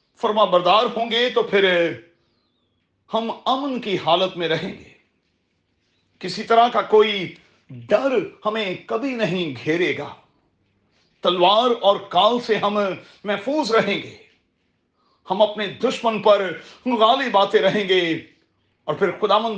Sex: male